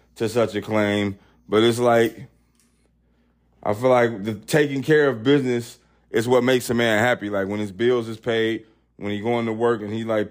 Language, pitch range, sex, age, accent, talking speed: English, 95-120 Hz, male, 20-39, American, 205 wpm